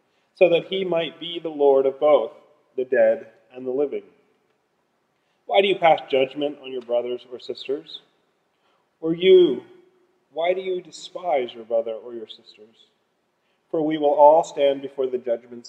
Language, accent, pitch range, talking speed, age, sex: English, American, 130-190 Hz, 165 wpm, 40-59, male